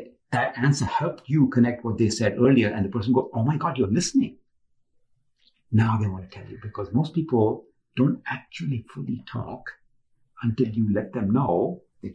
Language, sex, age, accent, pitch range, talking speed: English, male, 50-69, Indian, 105-135 Hz, 190 wpm